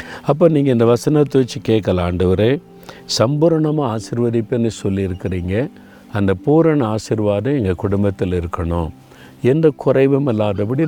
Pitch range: 95-120 Hz